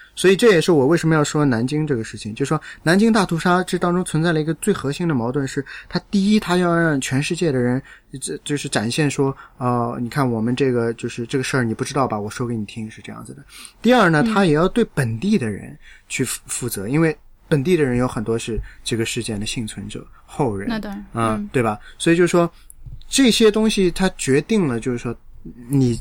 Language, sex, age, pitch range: Chinese, male, 20-39, 115-160 Hz